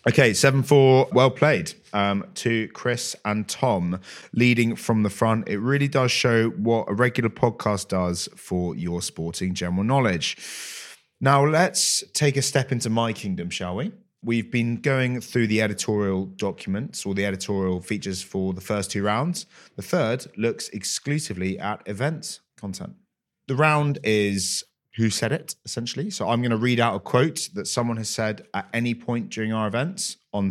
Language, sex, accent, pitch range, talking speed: English, male, British, 95-125 Hz, 170 wpm